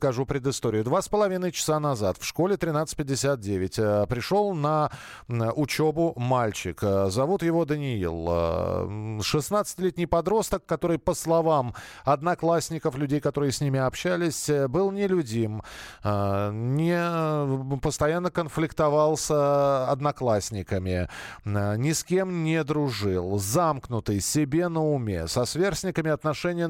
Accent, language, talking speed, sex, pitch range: native, Russian, 100 wpm, male, 125-170 Hz